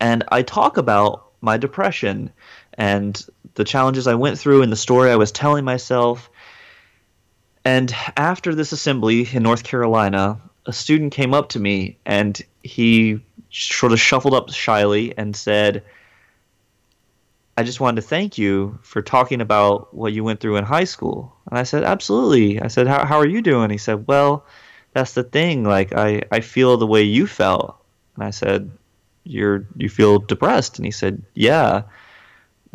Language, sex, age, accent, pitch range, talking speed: English, male, 20-39, American, 100-125 Hz, 170 wpm